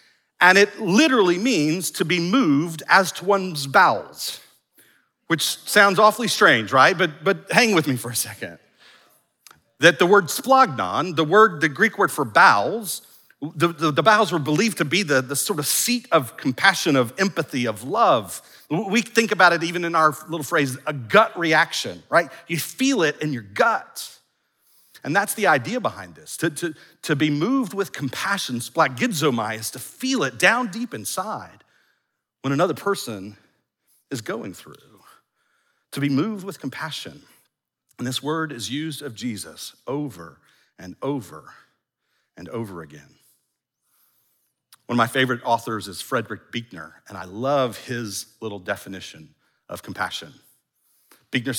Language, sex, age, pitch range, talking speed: English, male, 40-59, 125-190 Hz, 155 wpm